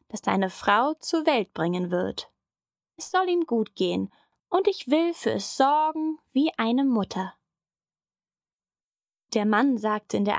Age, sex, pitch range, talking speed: 10-29, female, 195-275 Hz, 150 wpm